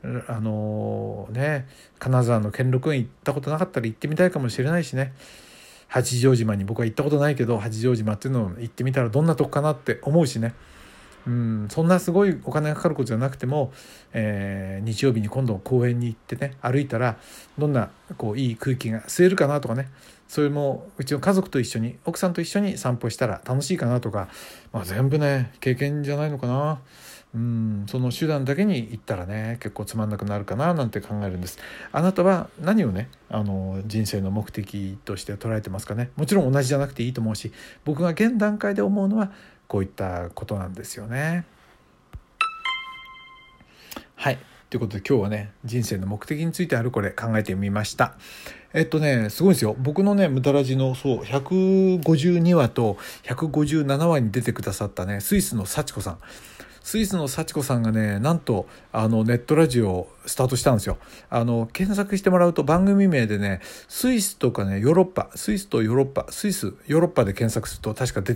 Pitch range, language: 110-155 Hz, Japanese